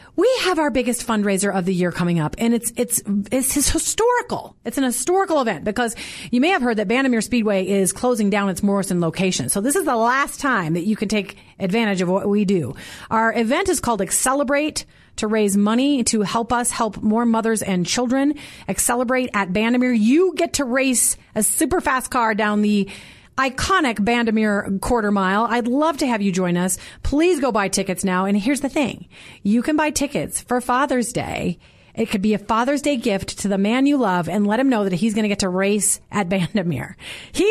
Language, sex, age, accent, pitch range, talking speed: English, female, 30-49, American, 195-260 Hz, 210 wpm